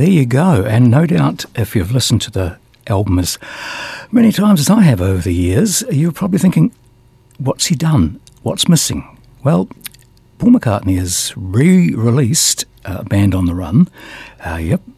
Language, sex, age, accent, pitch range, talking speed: English, male, 60-79, British, 105-160 Hz, 175 wpm